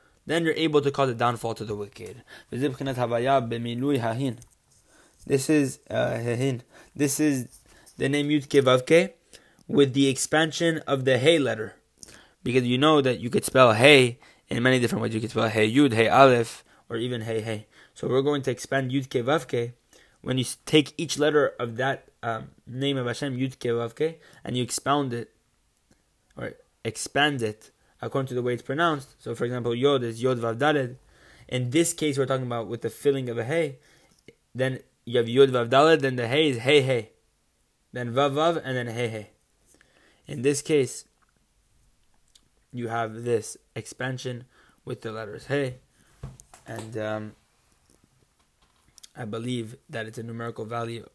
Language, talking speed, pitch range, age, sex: English, 155 wpm, 115-140 Hz, 20-39, male